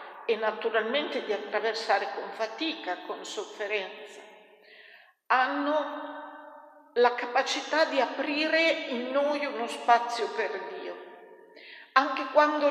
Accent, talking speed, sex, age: native, 100 wpm, female, 50-69